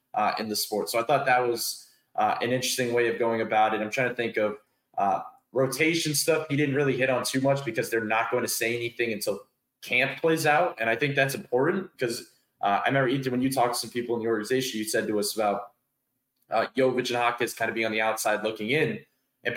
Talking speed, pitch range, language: 245 wpm, 120-160 Hz, English